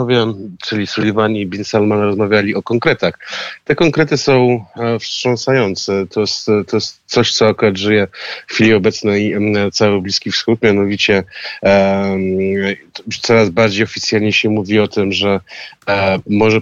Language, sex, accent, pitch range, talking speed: Polish, male, native, 100-115 Hz, 135 wpm